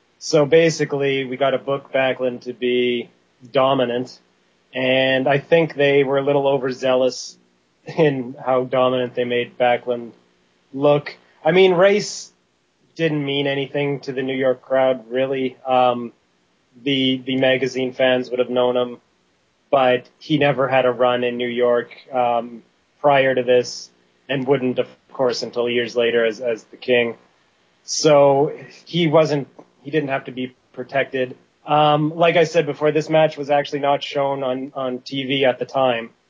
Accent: American